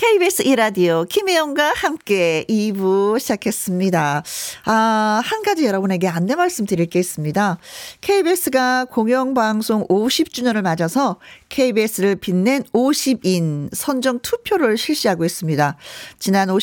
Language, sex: Korean, female